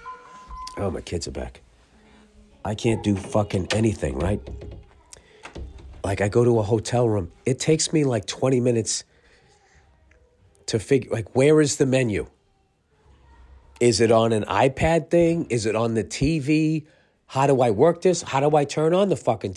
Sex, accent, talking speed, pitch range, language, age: male, American, 165 wpm, 85-120 Hz, English, 40-59